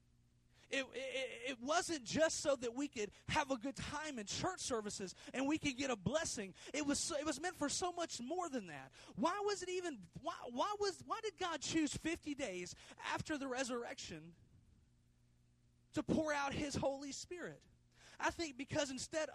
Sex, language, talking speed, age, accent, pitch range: male, English, 185 wpm, 30-49, American, 230-320 Hz